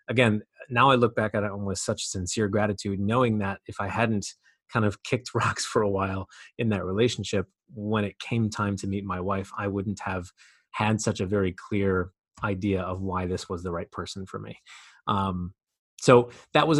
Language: English